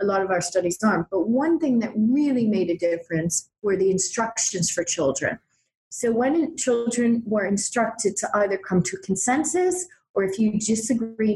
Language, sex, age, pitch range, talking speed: English, female, 30-49, 185-230 Hz, 180 wpm